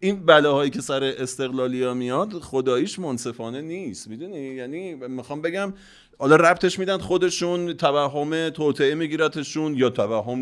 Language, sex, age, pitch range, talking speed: Persian, male, 30-49, 125-160 Hz, 125 wpm